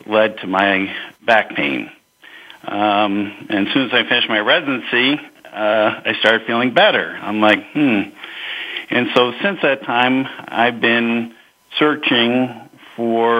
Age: 50-69